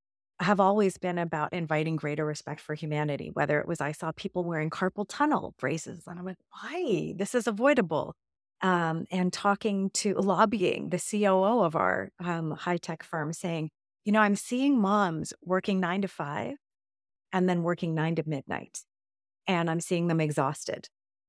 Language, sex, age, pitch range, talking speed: English, female, 30-49, 155-205 Hz, 170 wpm